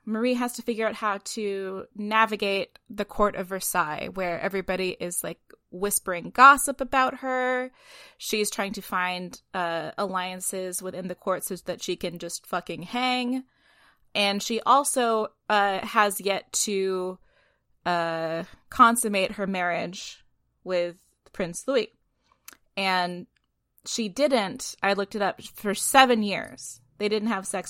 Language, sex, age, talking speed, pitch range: English, female, 20-39, 140 wpm, 185-225 Hz